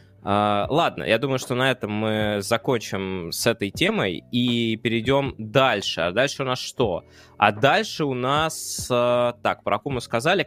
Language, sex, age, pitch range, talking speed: Russian, male, 20-39, 110-140 Hz, 155 wpm